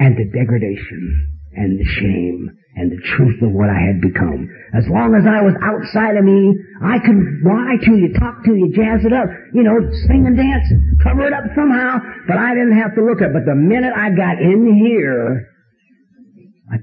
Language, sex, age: English, male, 50-69